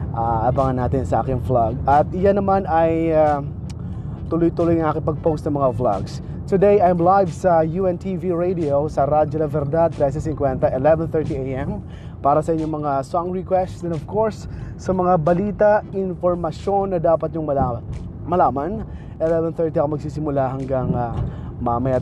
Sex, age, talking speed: male, 20-39, 140 wpm